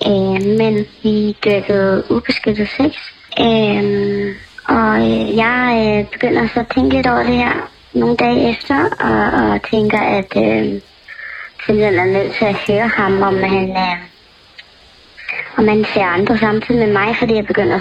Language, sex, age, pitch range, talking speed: Danish, male, 20-39, 205-250 Hz, 165 wpm